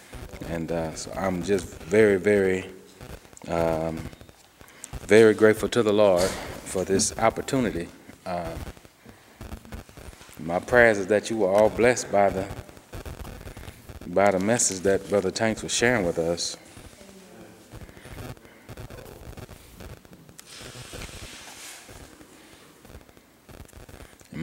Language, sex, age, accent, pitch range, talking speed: English, male, 30-49, American, 90-110 Hz, 95 wpm